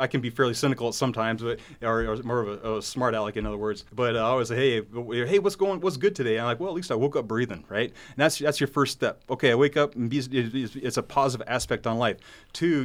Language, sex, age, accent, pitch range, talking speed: English, male, 30-49, American, 110-135 Hz, 290 wpm